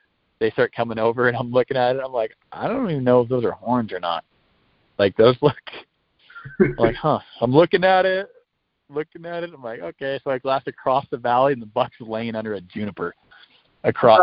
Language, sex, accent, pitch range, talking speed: English, male, American, 115-155 Hz, 215 wpm